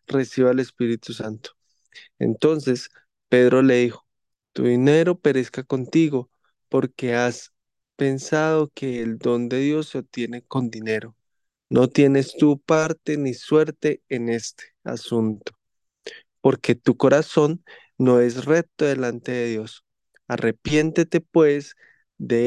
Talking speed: 120 wpm